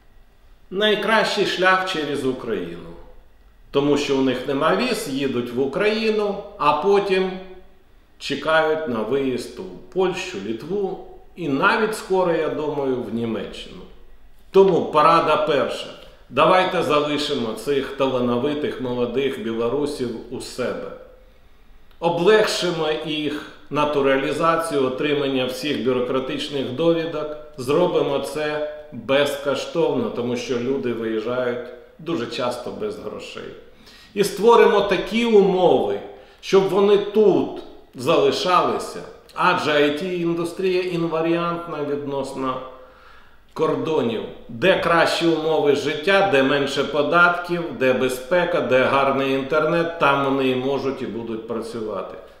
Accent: native